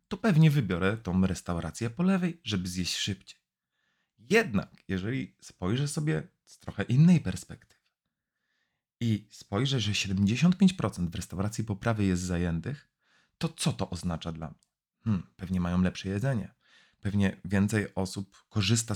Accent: native